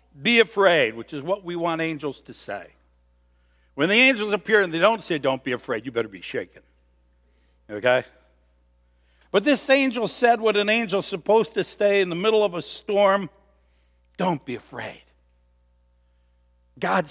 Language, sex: English, male